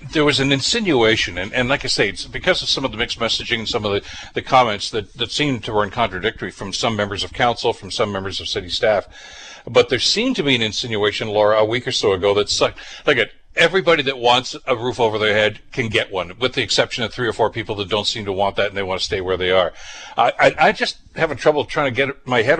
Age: 60-79